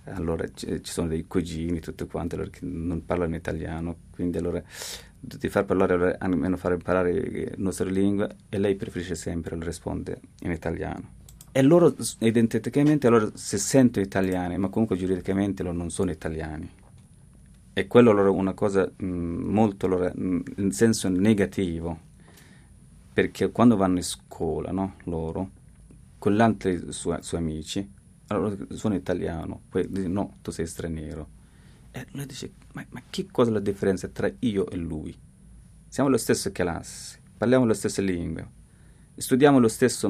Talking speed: 160 wpm